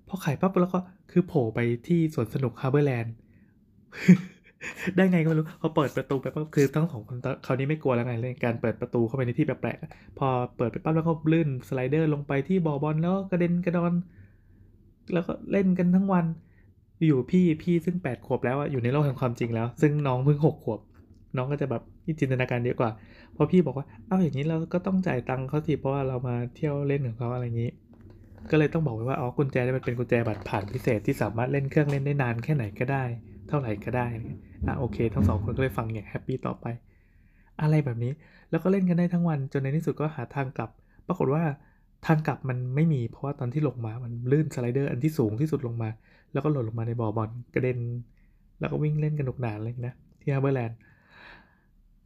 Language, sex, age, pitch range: Thai, male, 20-39, 115-155 Hz